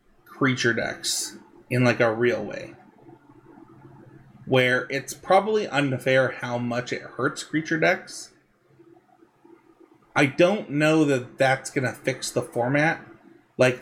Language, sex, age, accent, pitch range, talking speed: English, male, 30-49, American, 125-150 Hz, 120 wpm